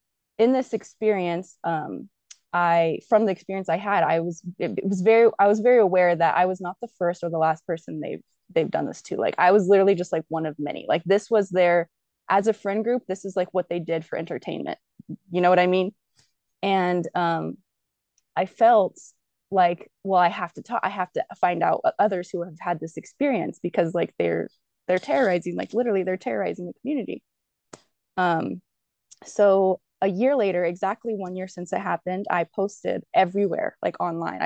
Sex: female